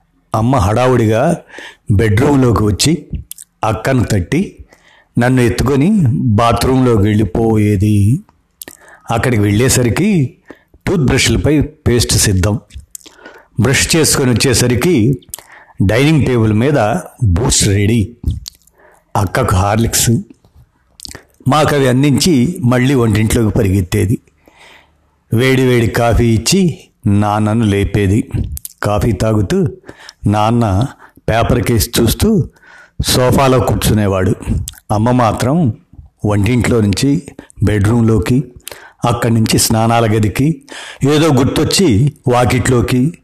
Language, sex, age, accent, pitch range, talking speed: Telugu, male, 60-79, native, 105-130 Hz, 80 wpm